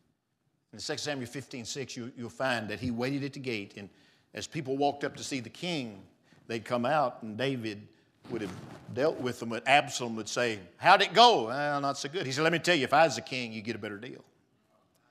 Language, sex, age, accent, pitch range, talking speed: English, male, 50-69, American, 115-150 Hz, 235 wpm